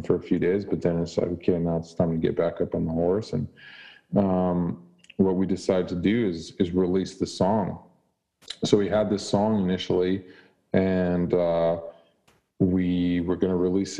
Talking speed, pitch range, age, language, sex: 190 wpm, 85-100 Hz, 40-59, English, male